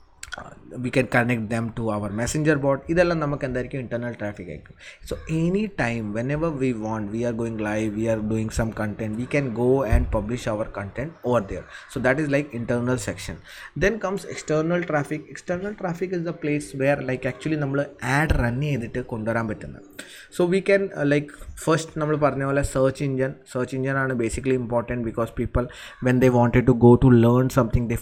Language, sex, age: English, male, 20-39